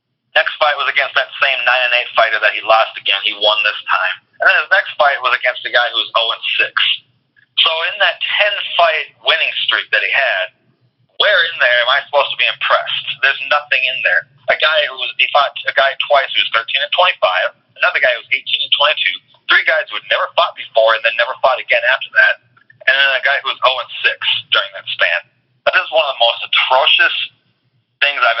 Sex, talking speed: male, 210 wpm